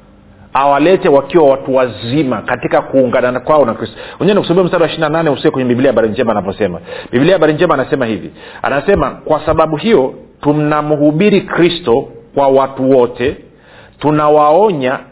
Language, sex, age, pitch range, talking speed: Swahili, male, 40-59, 135-170 Hz, 145 wpm